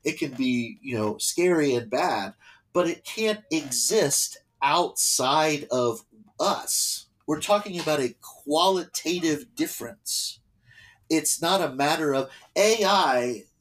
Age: 30-49